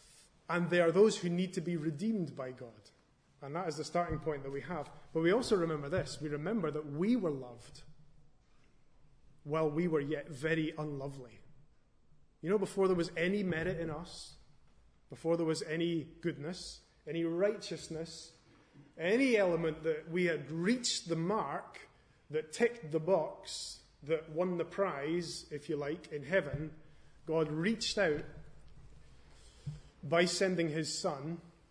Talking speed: 155 wpm